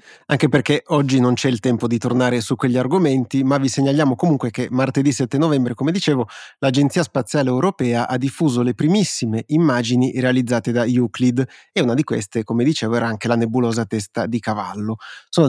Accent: native